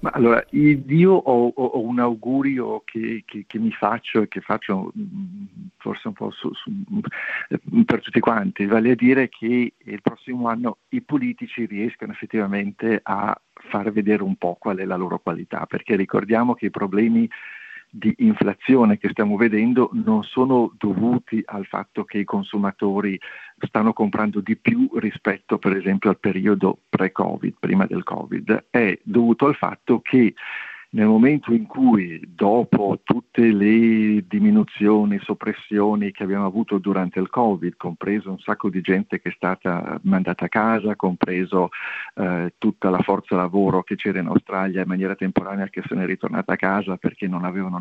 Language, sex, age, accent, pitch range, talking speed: Italian, male, 50-69, native, 100-135 Hz, 160 wpm